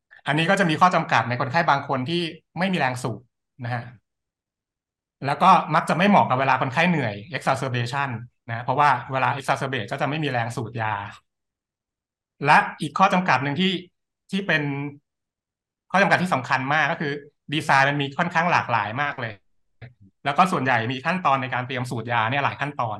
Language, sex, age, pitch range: Thai, male, 60-79, 120-160 Hz